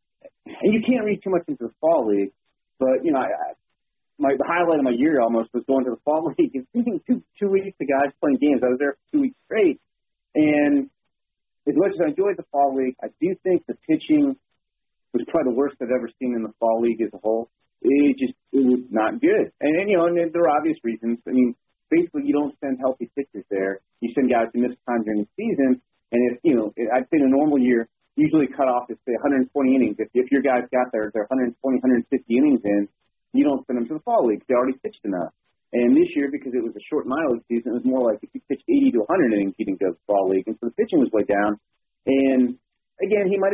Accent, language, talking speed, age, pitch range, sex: American, English, 255 wpm, 30-49, 115-180 Hz, male